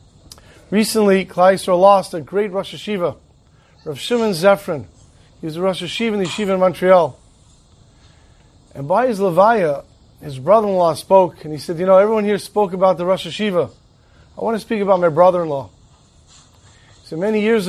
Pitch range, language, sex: 170-215 Hz, English, male